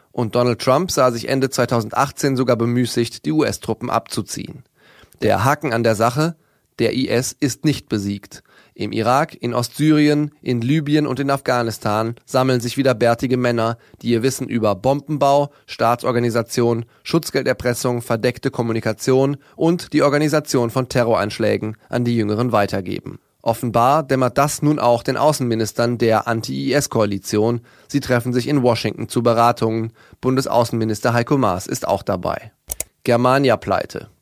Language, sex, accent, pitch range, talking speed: German, male, German, 115-135 Hz, 135 wpm